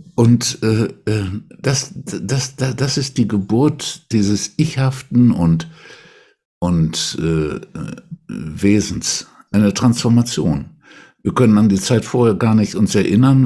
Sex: male